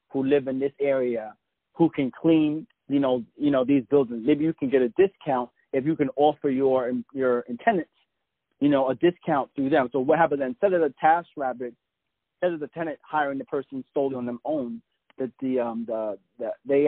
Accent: American